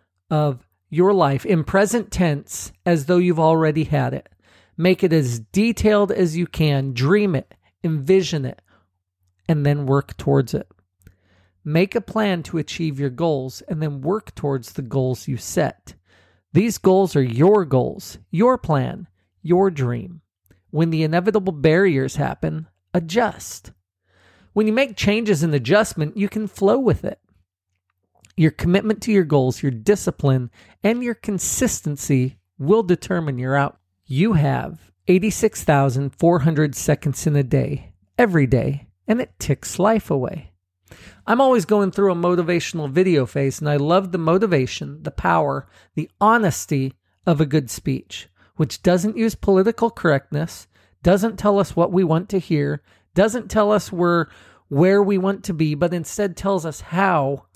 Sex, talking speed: male, 150 wpm